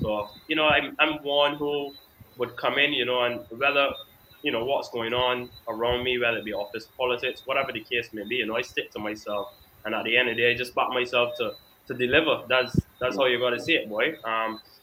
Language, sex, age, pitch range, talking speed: English, male, 10-29, 110-125 Hz, 245 wpm